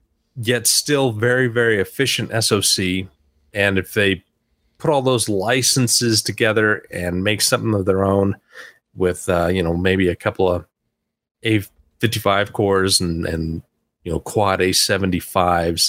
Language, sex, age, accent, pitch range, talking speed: English, male, 30-49, American, 95-120 Hz, 135 wpm